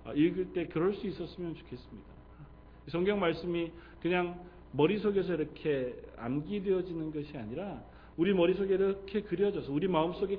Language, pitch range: Korean, 135-200 Hz